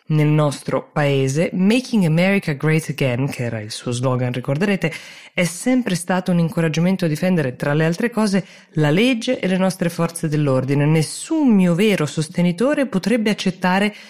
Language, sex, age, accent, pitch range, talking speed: Italian, female, 20-39, native, 135-185 Hz, 155 wpm